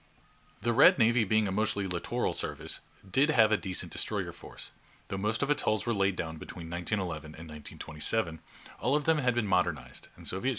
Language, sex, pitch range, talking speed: English, male, 85-115 Hz, 195 wpm